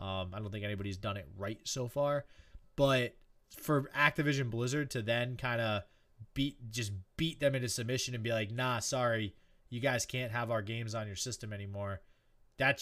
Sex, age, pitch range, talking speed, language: male, 20-39, 110-145 Hz, 185 wpm, English